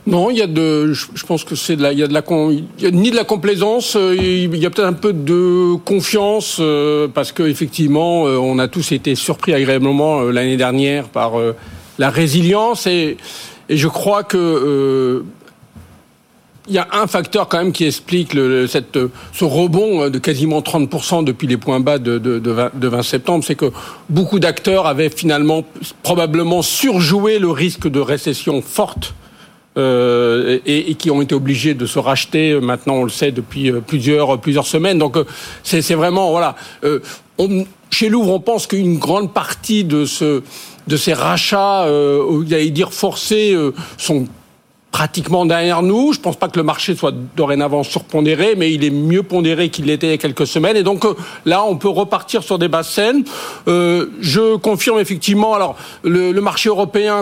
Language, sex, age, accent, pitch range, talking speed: French, male, 50-69, French, 145-185 Hz, 185 wpm